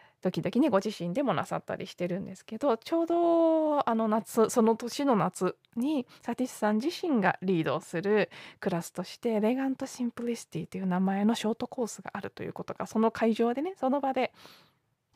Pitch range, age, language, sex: 185-250 Hz, 20-39, Japanese, female